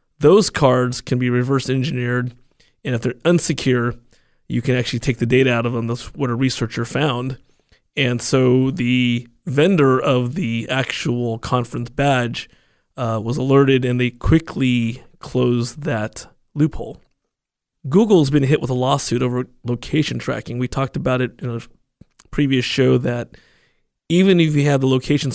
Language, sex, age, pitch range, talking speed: English, male, 30-49, 120-140 Hz, 155 wpm